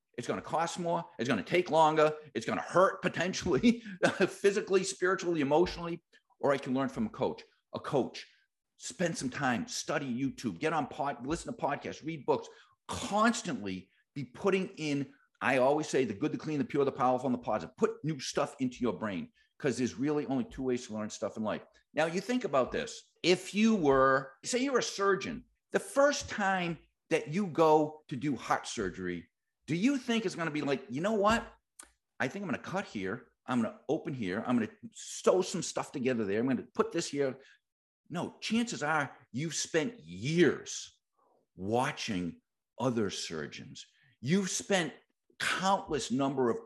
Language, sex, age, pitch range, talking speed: English, male, 50-69, 130-205 Hz, 190 wpm